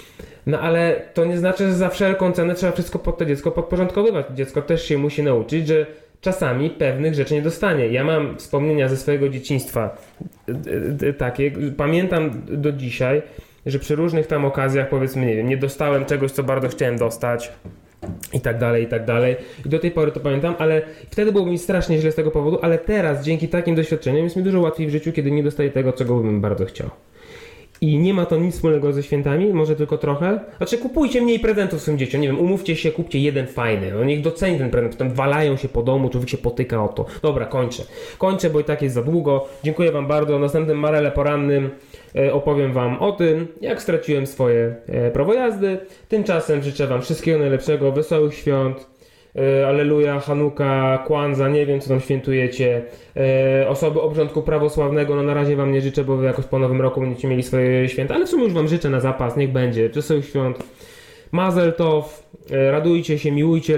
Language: Polish